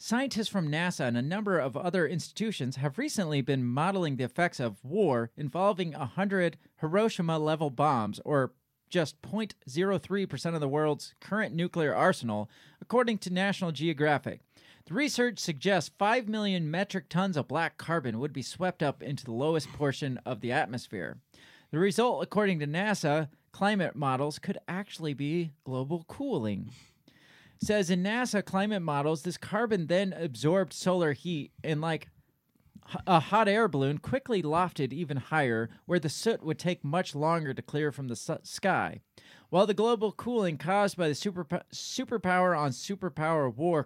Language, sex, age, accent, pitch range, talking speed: English, male, 30-49, American, 145-195 Hz, 150 wpm